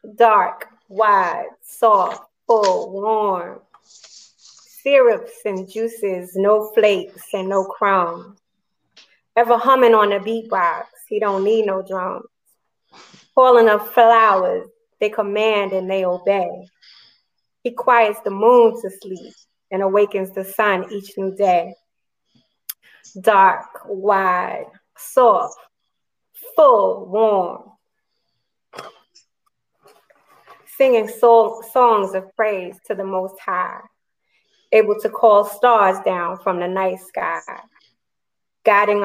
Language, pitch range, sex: English, 190-225 Hz, female